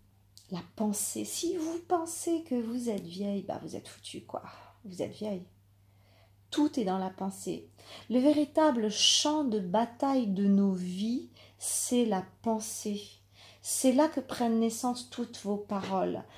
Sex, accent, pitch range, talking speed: female, French, 195-245 Hz, 155 wpm